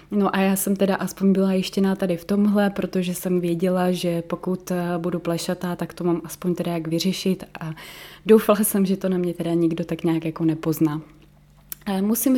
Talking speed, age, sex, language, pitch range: 190 wpm, 20-39, female, Czech, 180-205 Hz